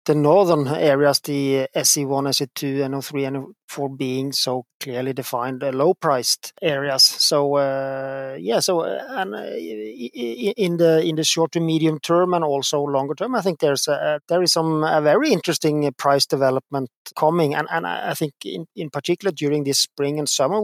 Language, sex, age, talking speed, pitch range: English, male, 30-49, 175 wpm, 140-160 Hz